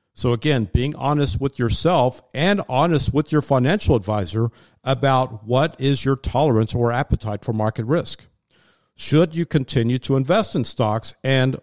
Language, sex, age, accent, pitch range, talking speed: English, male, 50-69, American, 115-140 Hz, 155 wpm